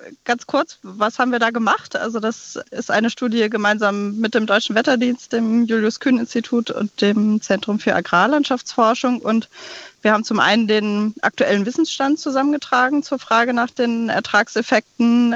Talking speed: 150 wpm